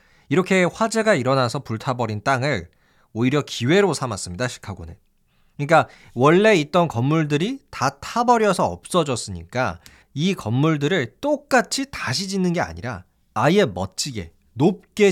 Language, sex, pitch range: Korean, male, 120-190 Hz